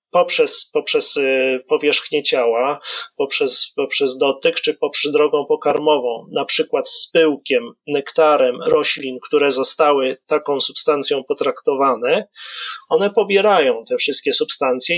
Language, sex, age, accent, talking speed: Polish, male, 30-49, native, 110 wpm